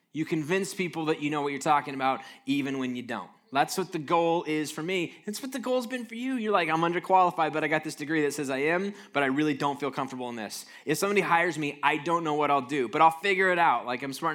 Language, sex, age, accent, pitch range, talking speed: English, male, 10-29, American, 140-180 Hz, 280 wpm